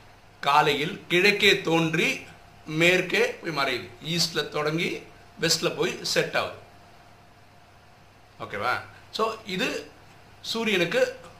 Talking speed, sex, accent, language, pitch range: 85 wpm, male, native, Tamil, 115-180 Hz